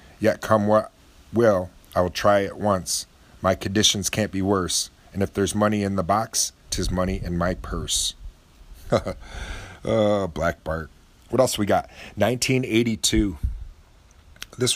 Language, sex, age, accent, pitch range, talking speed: English, male, 40-59, American, 85-100 Hz, 140 wpm